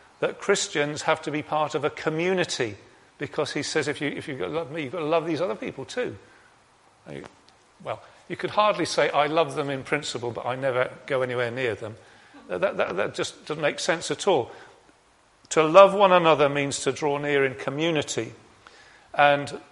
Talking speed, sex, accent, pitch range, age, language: 200 wpm, male, British, 135-165 Hz, 40-59, English